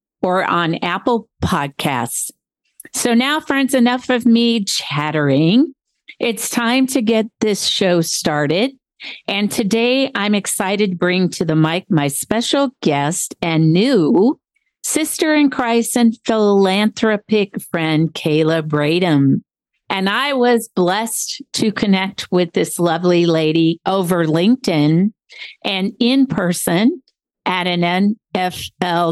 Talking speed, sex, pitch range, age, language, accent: 120 wpm, female, 170-235 Hz, 50-69, English, American